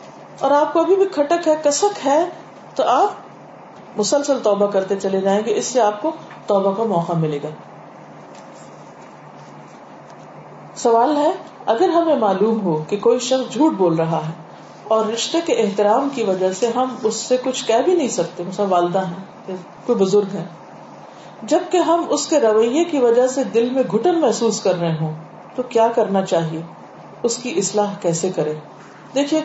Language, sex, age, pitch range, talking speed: Urdu, female, 40-59, 190-255 Hz, 170 wpm